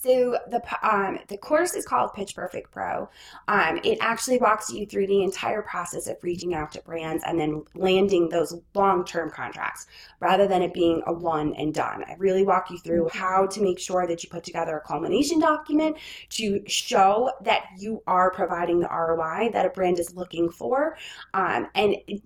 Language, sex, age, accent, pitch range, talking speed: English, female, 20-39, American, 175-210 Hz, 190 wpm